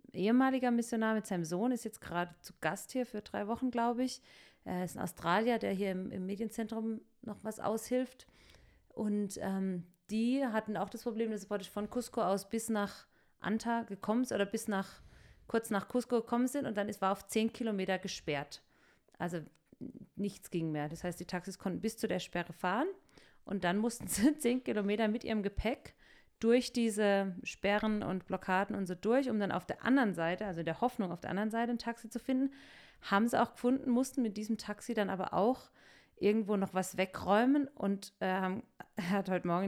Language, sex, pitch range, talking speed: German, female, 185-230 Hz, 195 wpm